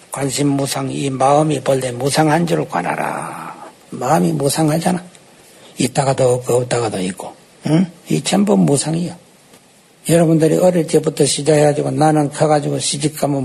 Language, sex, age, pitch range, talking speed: English, male, 60-79, 140-165 Hz, 115 wpm